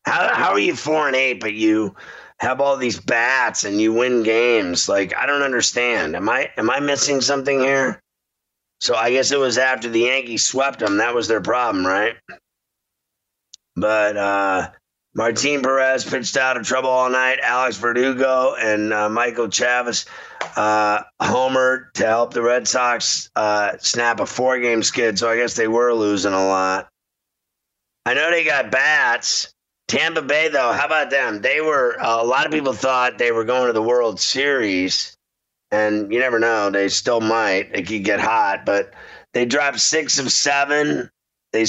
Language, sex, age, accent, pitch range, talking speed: English, male, 30-49, American, 110-130 Hz, 180 wpm